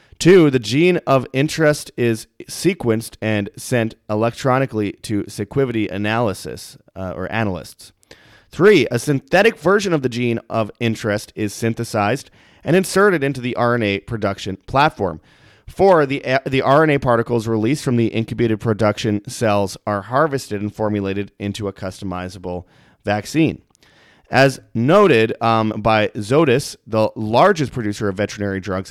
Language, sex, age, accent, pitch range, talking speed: English, male, 30-49, American, 105-135 Hz, 135 wpm